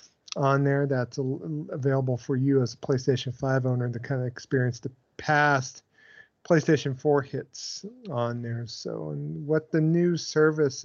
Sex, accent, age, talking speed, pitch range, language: male, American, 40-59, 155 wpm, 125-145 Hz, English